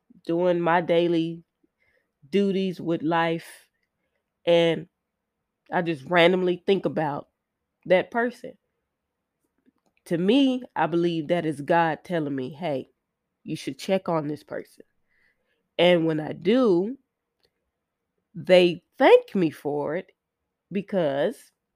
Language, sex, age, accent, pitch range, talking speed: English, female, 20-39, American, 165-210 Hz, 110 wpm